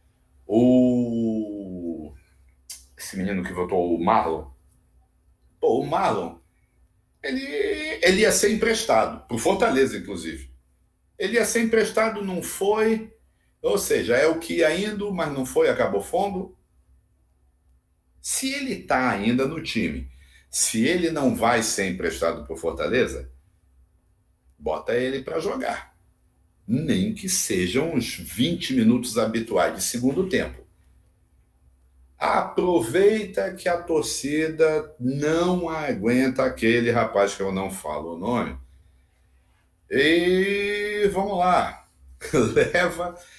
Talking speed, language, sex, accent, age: 110 wpm, Portuguese, male, Brazilian, 60-79